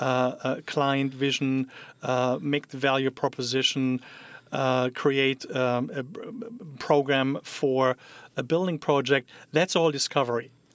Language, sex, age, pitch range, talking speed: English, male, 40-59, 130-150 Hz, 130 wpm